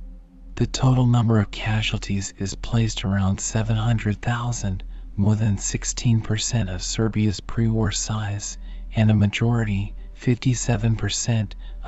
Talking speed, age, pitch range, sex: 100 wpm, 40-59, 100-115 Hz, male